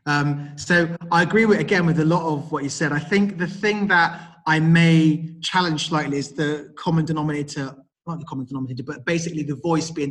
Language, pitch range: English, 140-170 Hz